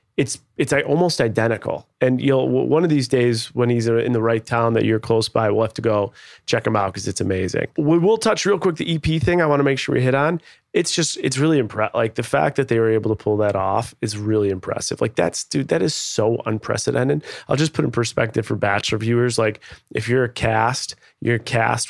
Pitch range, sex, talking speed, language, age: 110-135 Hz, male, 235 wpm, English, 30-49